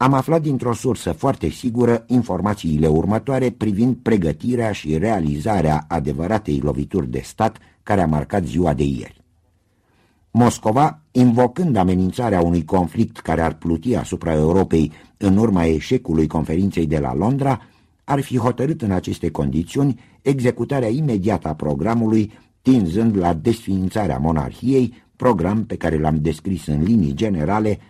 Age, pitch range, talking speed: 60-79, 80-115 Hz, 130 wpm